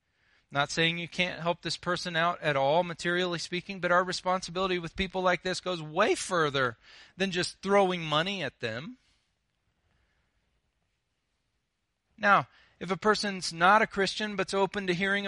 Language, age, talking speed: English, 40-59, 155 wpm